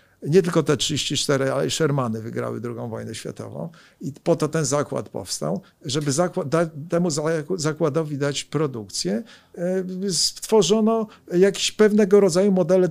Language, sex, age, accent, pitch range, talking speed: Polish, male, 50-69, native, 140-185 Hz, 125 wpm